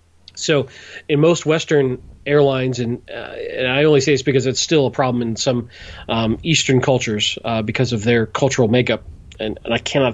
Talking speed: 190 wpm